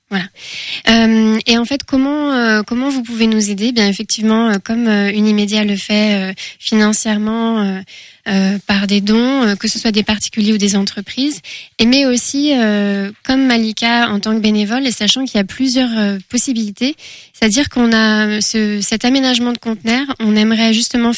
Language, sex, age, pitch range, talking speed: French, female, 20-39, 210-250 Hz, 185 wpm